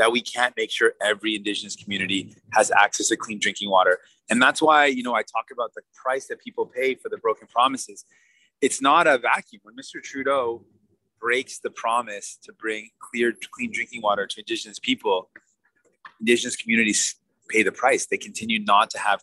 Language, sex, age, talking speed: English, male, 30-49, 185 wpm